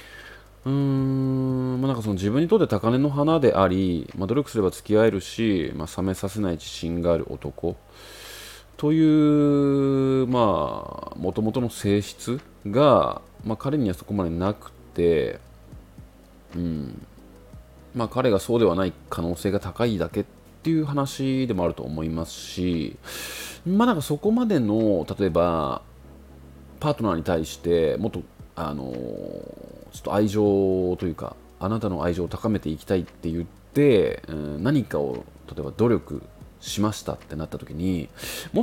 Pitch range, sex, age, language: 85-130 Hz, male, 30-49, Japanese